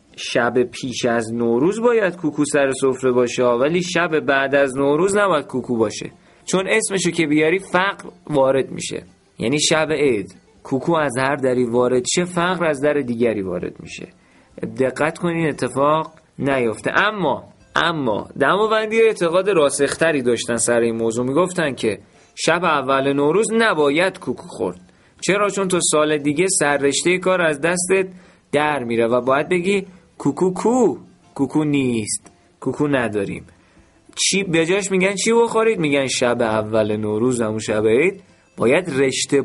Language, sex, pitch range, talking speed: Persian, male, 125-180 Hz, 150 wpm